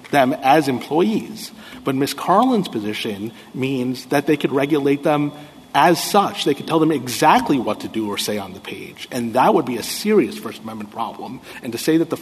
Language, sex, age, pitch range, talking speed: English, male, 30-49, 120-150 Hz, 205 wpm